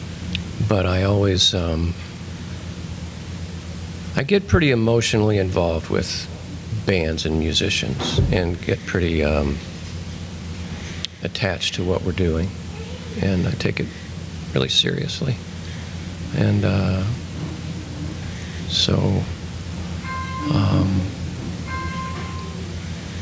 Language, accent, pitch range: English, American, 85-100 Hz